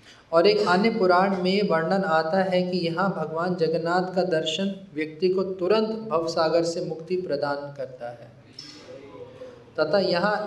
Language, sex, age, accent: Hindi, male, 20-39, native